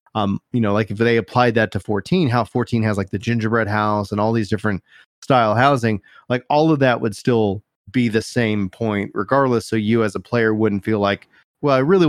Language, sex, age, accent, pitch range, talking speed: English, male, 30-49, American, 105-120 Hz, 225 wpm